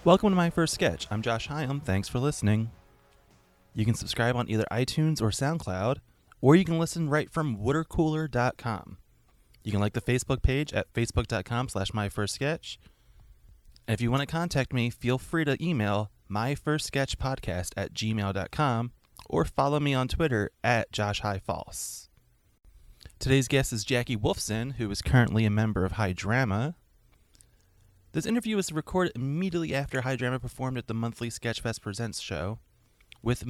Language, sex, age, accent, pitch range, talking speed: English, male, 20-39, American, 100-135 Hz, 150 wpm